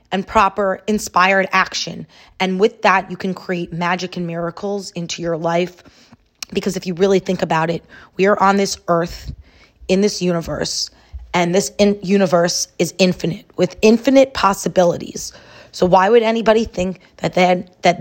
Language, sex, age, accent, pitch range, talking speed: English, female, 20-39, American, 180-205 Hz, 155 wpm